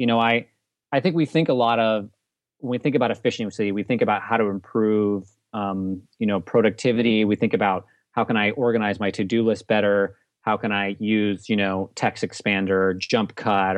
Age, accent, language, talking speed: 30-49, American, English, 205 wpm